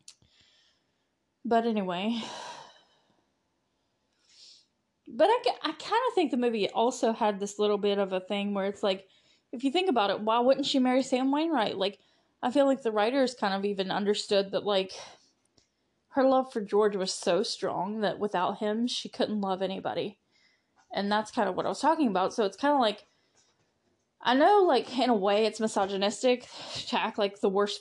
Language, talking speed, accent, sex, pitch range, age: English, 180 wpm, American, female, 200-290 Hz, 10-29